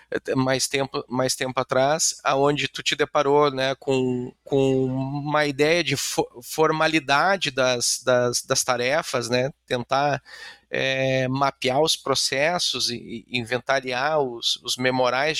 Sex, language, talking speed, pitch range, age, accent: male, Portuguese, 130 wpm, 130-160 Hz, 30-49, Brazilian